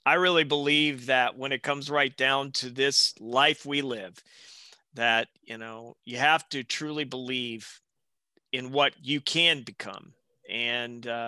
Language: English